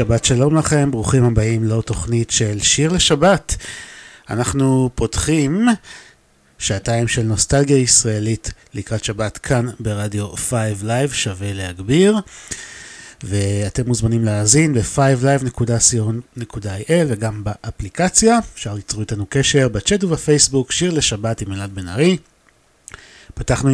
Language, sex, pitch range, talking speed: Hebrew, male, 110-140 Hz, 100 wpm